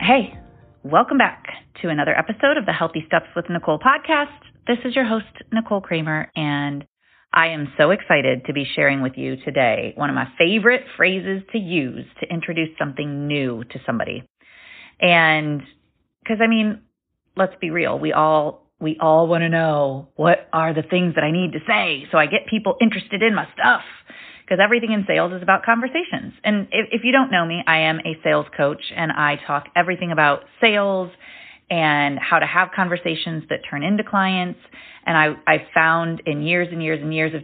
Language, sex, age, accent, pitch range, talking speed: English, female, 30-49, American, 155-200 Hz, 190 wpm